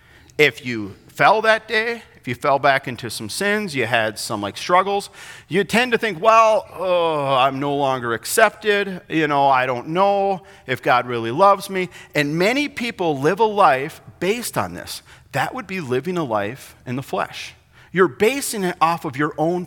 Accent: American